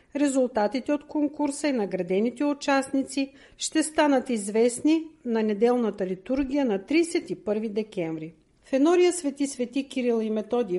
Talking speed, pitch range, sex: 120 wpm, 210-275 Hz, female